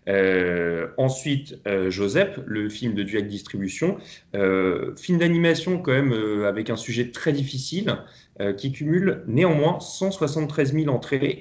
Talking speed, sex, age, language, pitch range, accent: 140 wpm, male, 30-49, French, 105-140 Hz, French